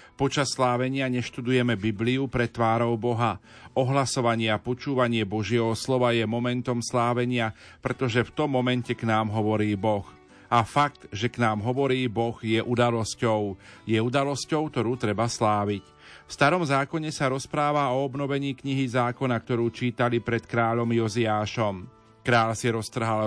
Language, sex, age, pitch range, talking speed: Slovak, male, 40-59, 110-130 Hz, 140 wpm